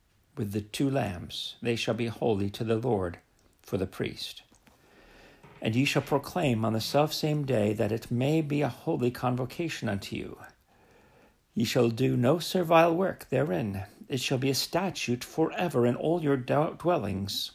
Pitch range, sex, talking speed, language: 115-155 Hz, male, 170 wpm, English